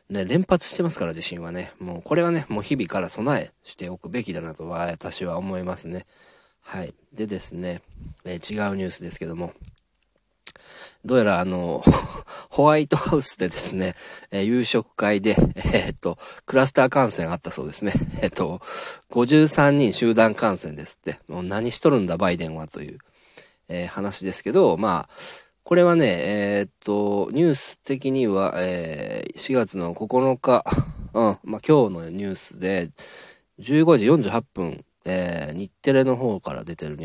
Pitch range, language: 85-130 Hz, Japanese